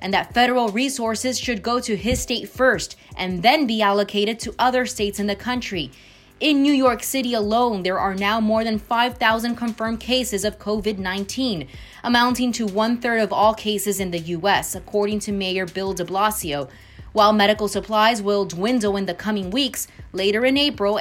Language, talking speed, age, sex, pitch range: English, 175 wpm, 20-39, female, 200-245 Hz